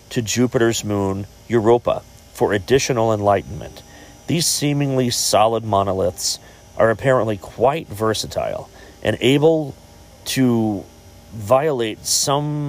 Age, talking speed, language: 40-59, 95 wpm, English